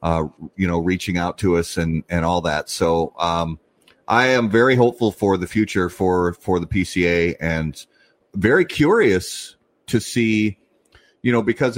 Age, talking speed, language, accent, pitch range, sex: 30-49, 165 wpm, English, American, 90-120 Hz, male